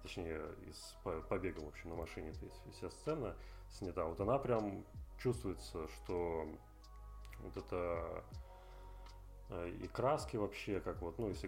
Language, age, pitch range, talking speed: Russian, 20-39, 85-100 Hz, 130 wpm